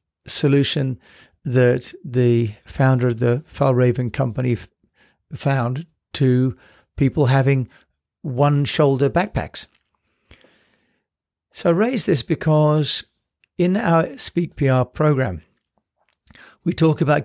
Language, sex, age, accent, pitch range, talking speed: English, male, 50-69, British, 125-155 Hz, 95 wpm